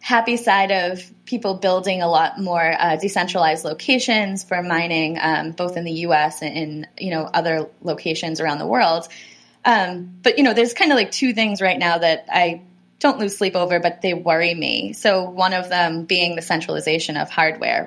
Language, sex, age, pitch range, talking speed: English, female, 20-39, 165-200 Hz, 195 wpm